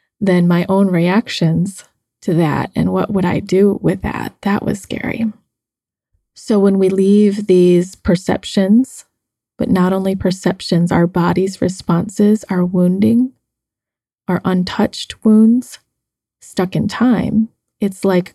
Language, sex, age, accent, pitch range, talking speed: English, female, 20-39, American, 180-210 Hz, 130 wpm